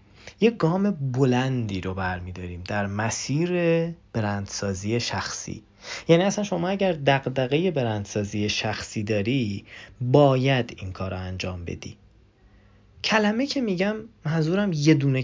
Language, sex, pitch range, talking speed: Persian, male, 100-145 Hz, 115 wpm